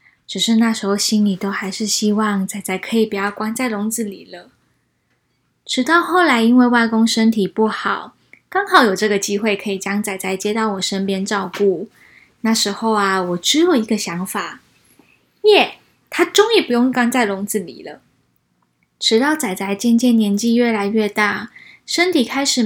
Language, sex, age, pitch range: Chinese, female, 10-29, 195-235 Hz